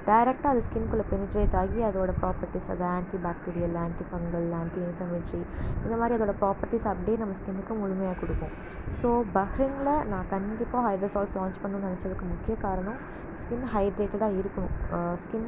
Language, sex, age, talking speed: Tamil, female, 20-39, 140 wpm